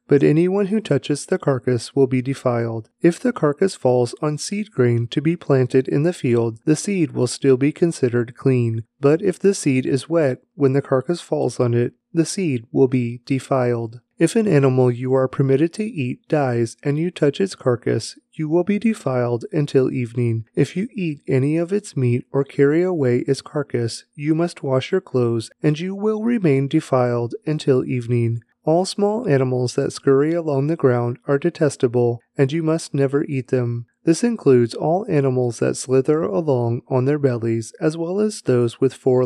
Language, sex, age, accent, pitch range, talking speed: English, male, 30-49, American, 125-160 Hz, 185 wpm